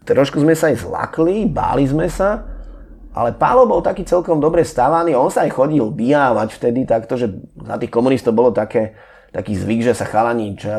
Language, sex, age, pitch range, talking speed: Slovak, male, 30-49, 115-155 Hz, 195 wpm